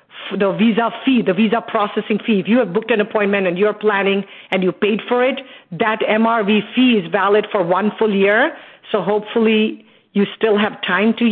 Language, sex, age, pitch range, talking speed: English, female, 50-69, 180-210 Hz, 195 wpm